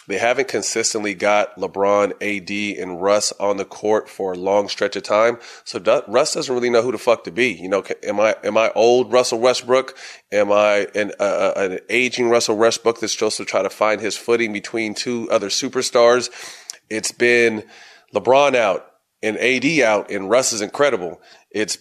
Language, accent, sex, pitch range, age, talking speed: English, American, male, 105-120 Hz, 30-49, 185 wpm